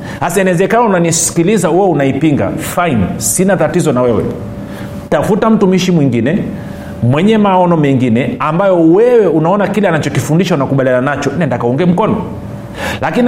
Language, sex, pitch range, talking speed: Swahili, male, 145-200 Hz, 120 wpm